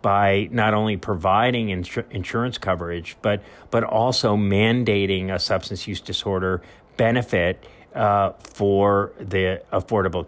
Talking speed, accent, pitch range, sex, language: 115 wpm, American, 100-120 Hz, male, English